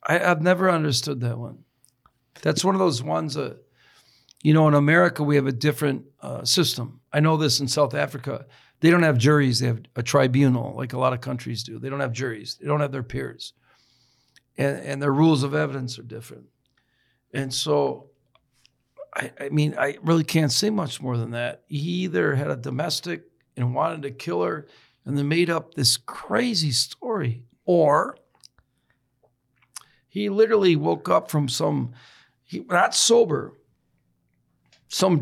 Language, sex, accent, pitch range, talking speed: English, male, American, 125-165 Hz, 165 wpm